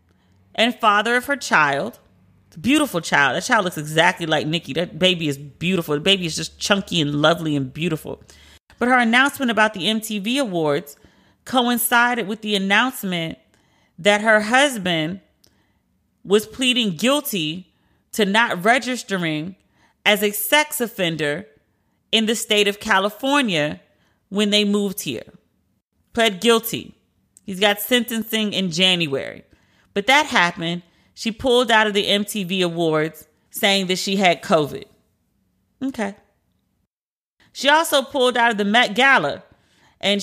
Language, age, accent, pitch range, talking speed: English, 40-59, American, 175-230 Hz, 140 wpm